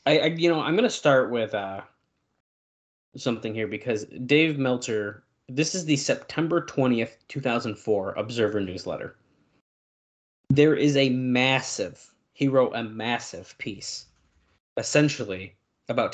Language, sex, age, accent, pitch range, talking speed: English, male, 20-39, American, 100-130 Hz, 125 wpm